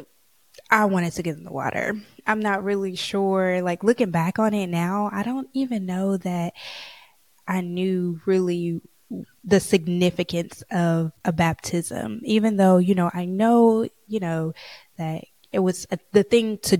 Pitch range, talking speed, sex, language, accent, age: 175-225 Hz, 160 wpm, female, English, American, 20-39